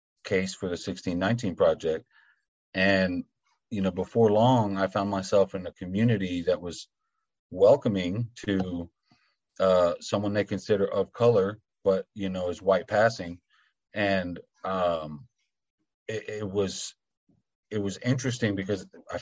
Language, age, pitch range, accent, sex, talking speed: English, 30-49, 95-115 Hz, American, male, 130 wpm